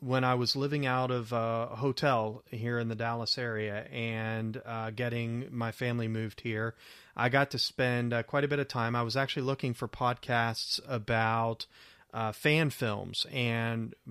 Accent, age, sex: American, 30-49, male